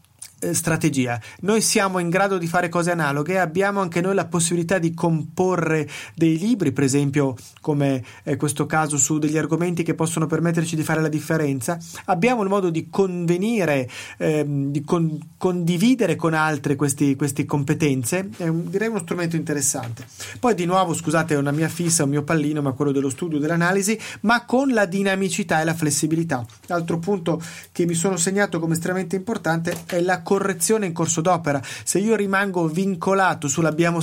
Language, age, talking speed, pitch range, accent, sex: Italian, 30-49, 170 wpm, 145-185 Hz, native, male